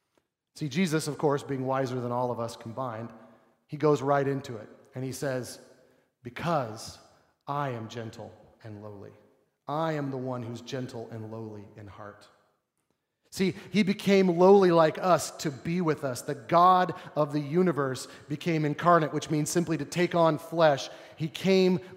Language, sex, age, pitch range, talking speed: English, male, 30-49, 130-175 Hz, 165 wpm